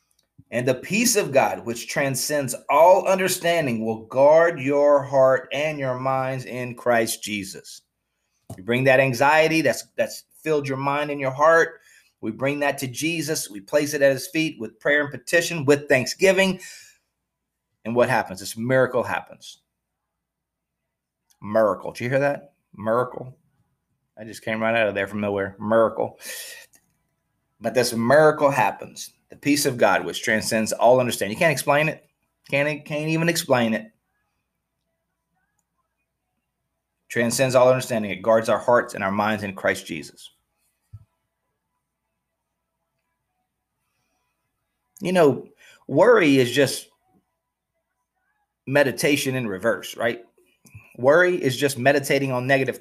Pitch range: 115-155 Hz